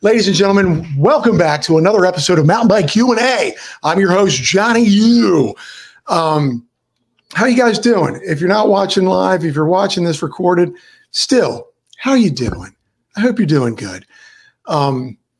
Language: English